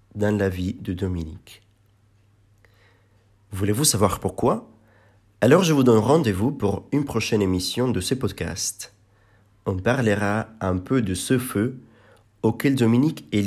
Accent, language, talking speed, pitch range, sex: French, French, 135 wpm, 100-115 Hz, male